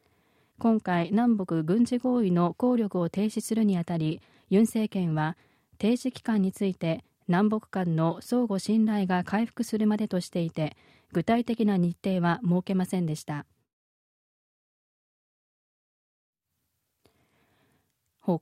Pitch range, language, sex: 175-220 Hz, Japanese, female